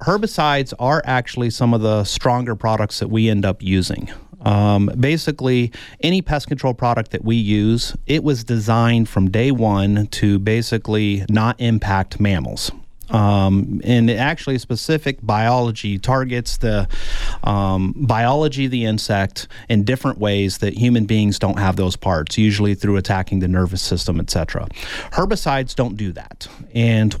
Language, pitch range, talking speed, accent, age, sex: English, 100-125 Hz, 150 wpm, American, 30-49, male